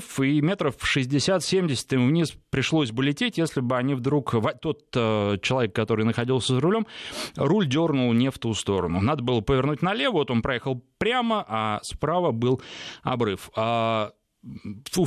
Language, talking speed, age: Russian, 150 wpm, 20-39